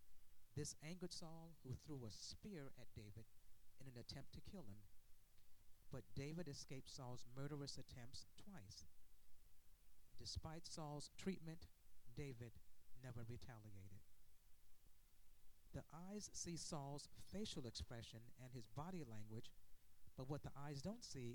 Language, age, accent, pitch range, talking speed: English, 50-69, American, 100-145 Hz, 125 wpm